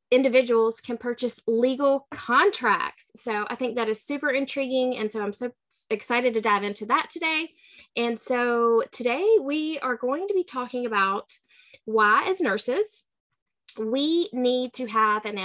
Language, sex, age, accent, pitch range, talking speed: English, female, 20-39, American, 220-290 Hz, 155 wpm